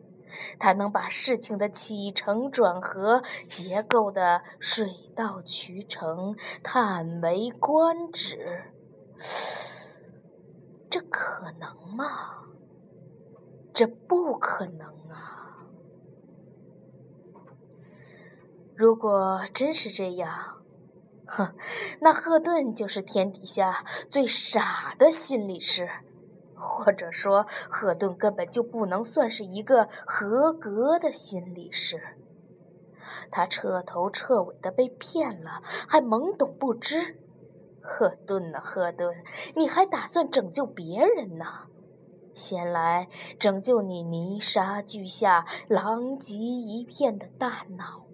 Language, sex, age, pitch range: Chinese, female, 20-39, 185-255 Hz